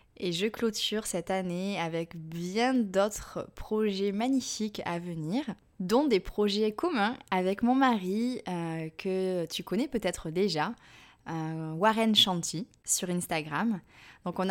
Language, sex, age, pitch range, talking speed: French, female, 20-39, 175-220 Hz, 130 wpm